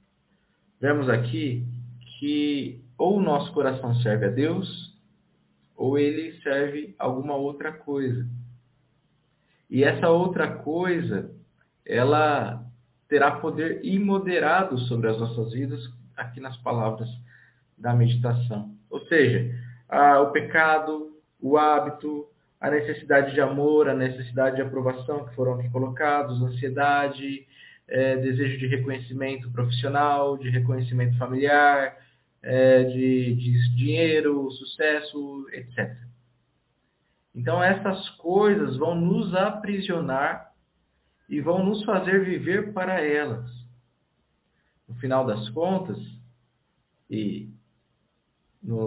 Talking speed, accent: 105 wpm, Brazilian